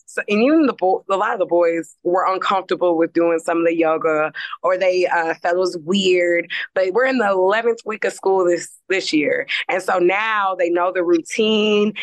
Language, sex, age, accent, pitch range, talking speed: English, female, 20-39, American, 175-215 Hz, 215 wpm